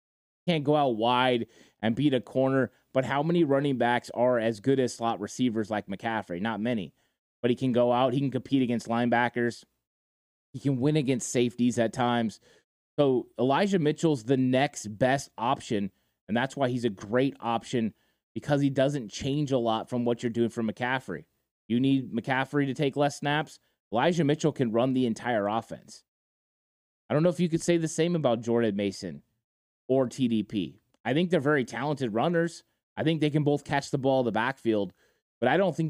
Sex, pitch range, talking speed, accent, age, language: male, 115-140 Hz, 190 wpm, American, 20-39, English